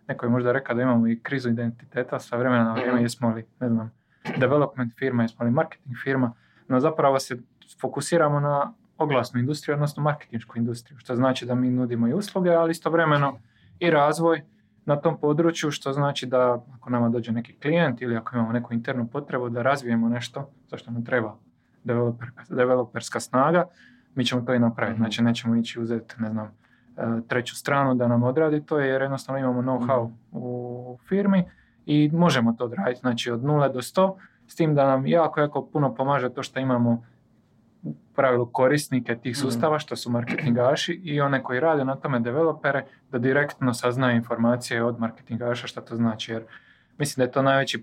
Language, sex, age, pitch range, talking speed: Croatian, male, 20-39, 120-140 Hz, 180 wpm